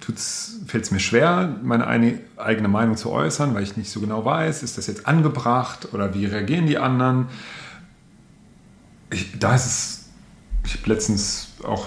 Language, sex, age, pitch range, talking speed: German, male, 40-59, 100-130 Hz, 145 wpm